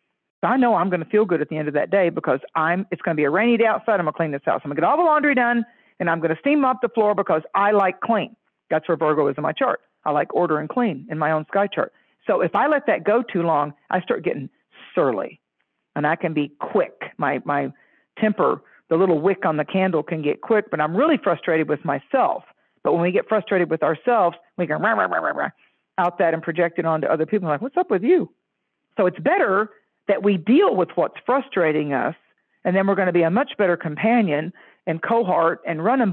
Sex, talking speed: female, 245 wpm